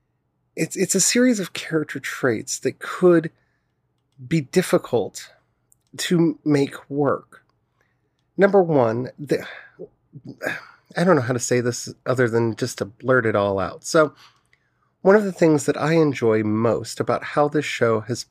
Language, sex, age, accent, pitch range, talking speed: English, male, 30-49, American, 120-160 Hz, 150 wpm